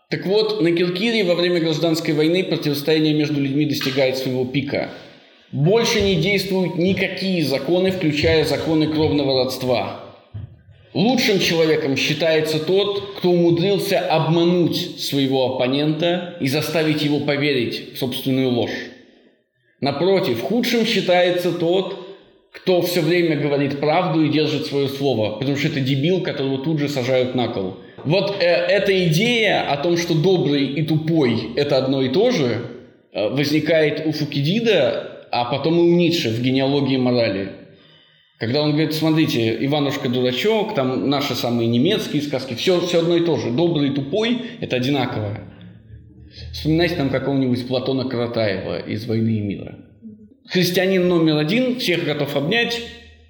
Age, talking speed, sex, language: 20-39, 140 wpm, male, Russian